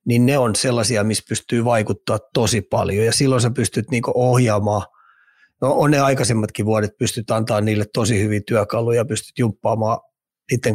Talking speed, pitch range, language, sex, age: 160 wpm, 110-130 Hz, Finnish, male, 30-49